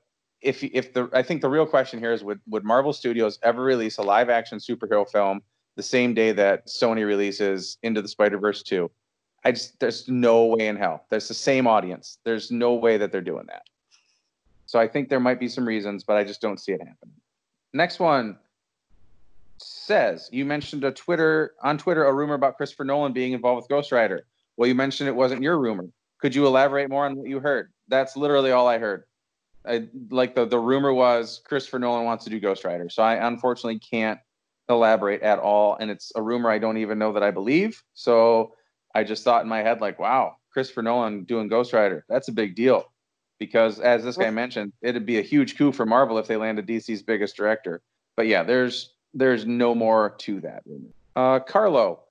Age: 30-49